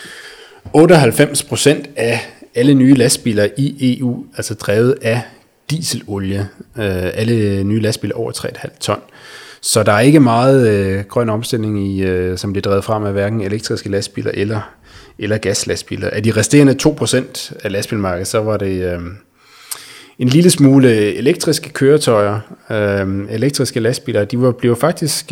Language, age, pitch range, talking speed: Danish, 30-49, 95-120 Hz, 140 wpm